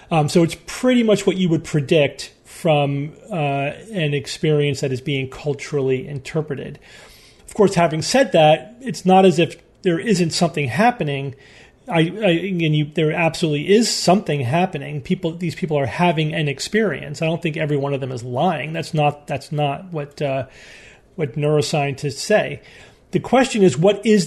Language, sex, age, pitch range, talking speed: English, male, 40-59, 145-185 Hz, 175 wpm